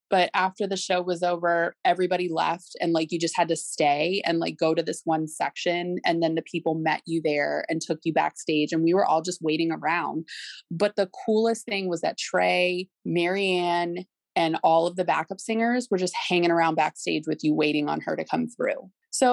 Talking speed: 210 wpm